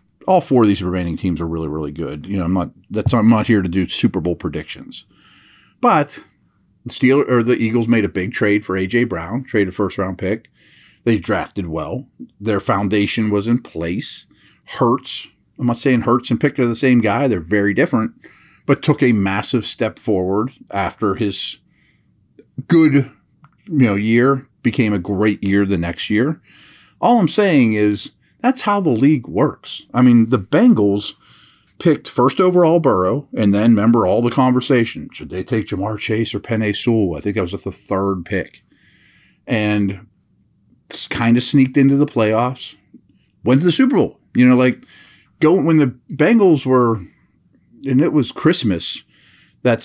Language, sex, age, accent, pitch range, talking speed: English, male, 40-59, American, 100-125 Hz, 175 wpm